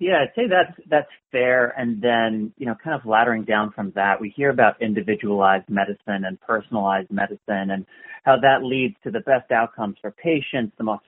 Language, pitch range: English, 110-155 Hz